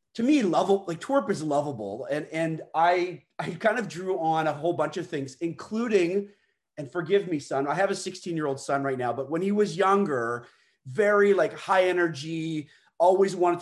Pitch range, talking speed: 155-205 Hz, 200 wpm